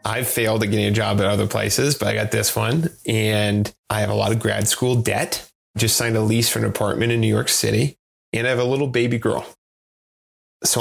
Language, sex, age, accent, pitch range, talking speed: English, male, 30-49, American, 105-120 Hz, 235 wpm